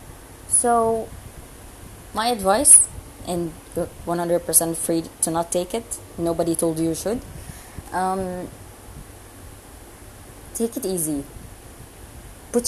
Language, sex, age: English, female, 20-39